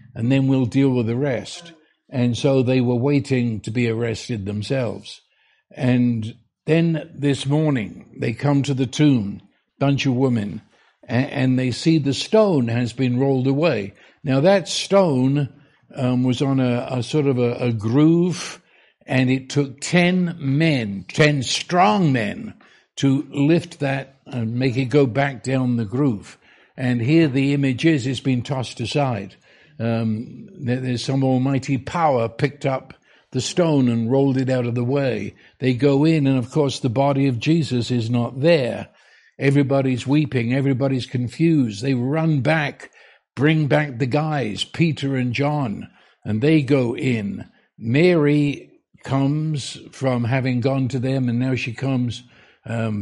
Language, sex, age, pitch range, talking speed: English, male, 60-79, 125-145 Hz, 155 wpm